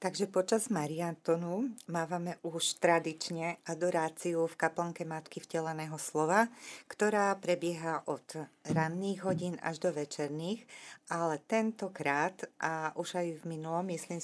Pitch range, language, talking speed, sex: 165-185 Hz, Slovak, 120 wpm, female